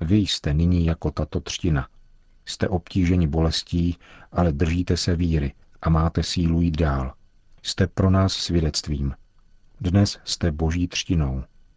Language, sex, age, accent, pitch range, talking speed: Czech, male, 50-69, native, 80-95 Hz, 135 wpm